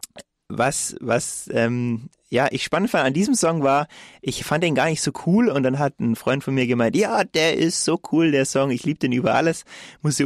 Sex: male